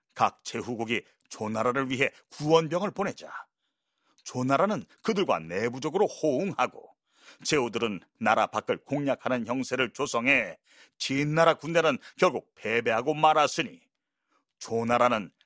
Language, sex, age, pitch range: Korean, male, 40-59, 120-165 Hz